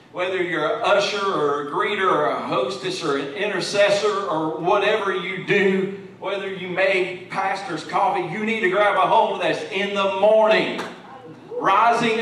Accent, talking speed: American, 165 wpm